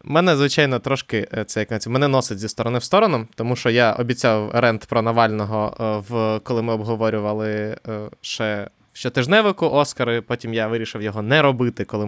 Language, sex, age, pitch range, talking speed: Ukrainian, male, 20-39, 115-155 Hz, 165 wpm